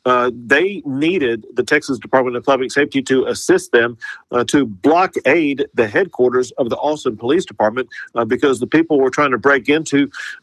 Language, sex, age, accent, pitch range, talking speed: English, male, 50-69, American, 130-155 Hz, 185 wpm